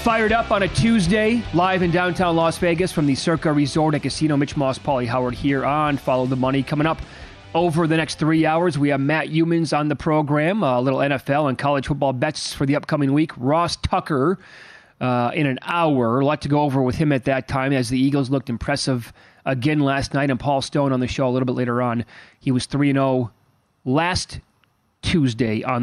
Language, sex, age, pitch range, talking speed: English, male, 30-49, 130-155 Hz, 210 wpm